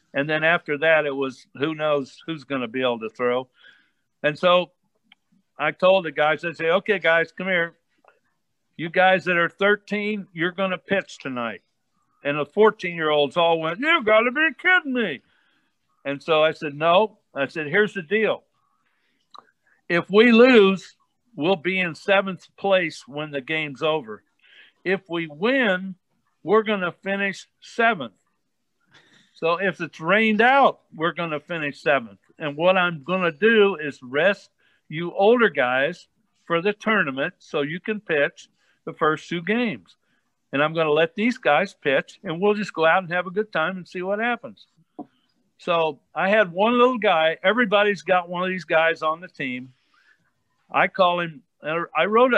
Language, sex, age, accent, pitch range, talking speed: English, male, 60-79, American, 155-205 Hz, 175 wpm